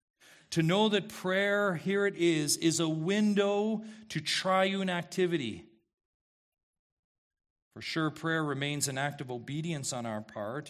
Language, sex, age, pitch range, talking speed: English, male, 40-59, 120-170 Hz, 135 wpm